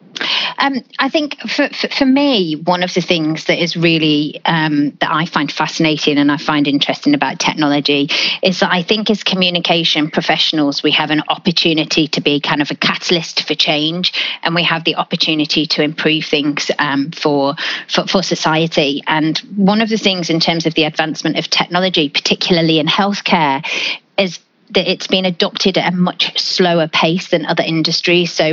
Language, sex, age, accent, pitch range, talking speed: English, female, 30-49, British, 155-185 Hz, 180 wpm